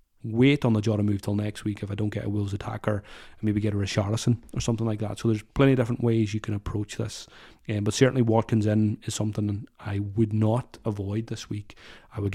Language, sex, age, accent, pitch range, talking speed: English, male, 30-49, British, 105-125 Hz, 240 wpm